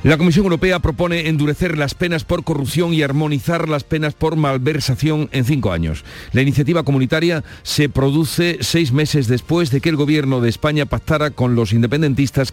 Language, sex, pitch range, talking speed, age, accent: Spanish, male, 125-155 Hz, 170 wpm, 50-69, Spanish